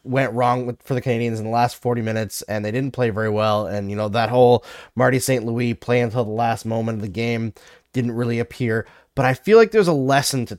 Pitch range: 115-170 Hz